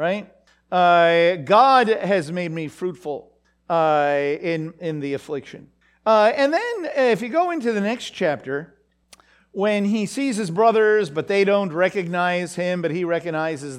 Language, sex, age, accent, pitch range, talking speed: English, male, 50-69, American, 170-245 Hz, 150 wpm